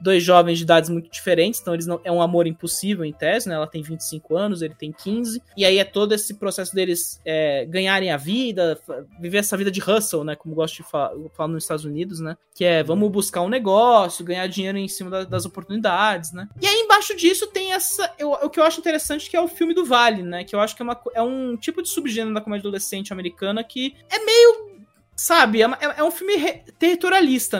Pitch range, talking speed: 180-265 Hz, 230 wpm